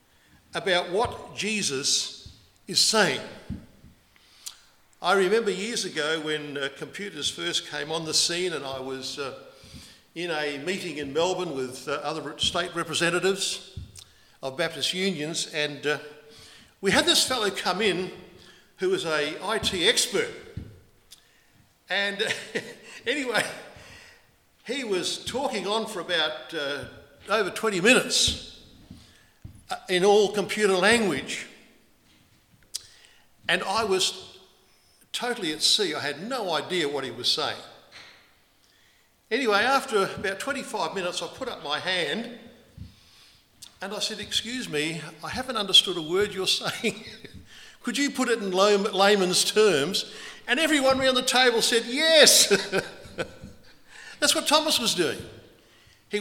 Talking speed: 125 wpm